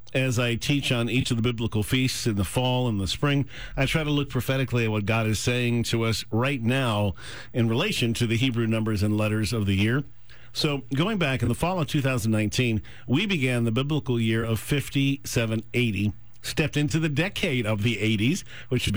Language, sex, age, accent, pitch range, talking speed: English, male, 50-69, American, 115-135 Hz, 200 wpm